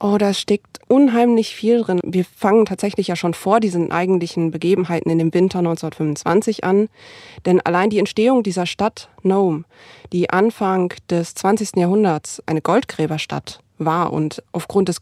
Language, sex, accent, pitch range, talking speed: German, female, German, 175-215 Hz, 150 wpm